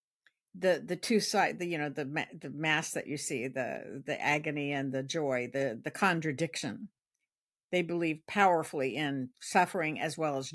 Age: 60-79